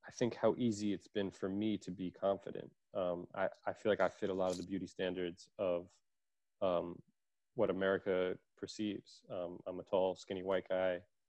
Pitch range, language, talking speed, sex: 90-100 Hz, English, 190 wpm, male